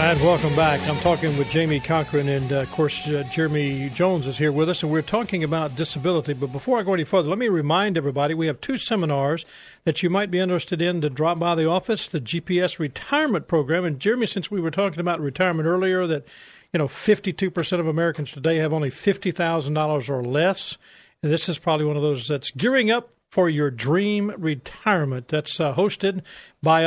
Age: 50-69